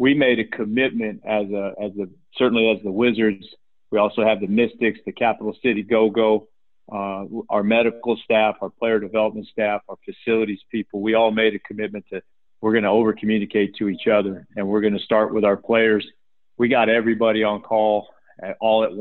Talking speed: 180 wpm